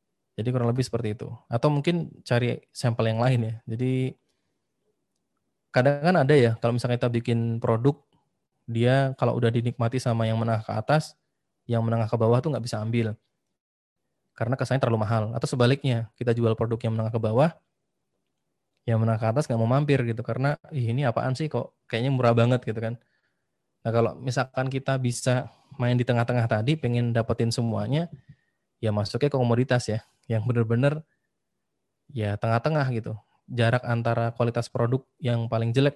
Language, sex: Indonesian, male